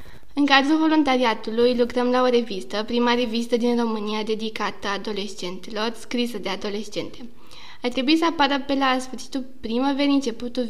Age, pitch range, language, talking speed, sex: 20-39, 230-275 Hz, Romanian, 140 wpm, female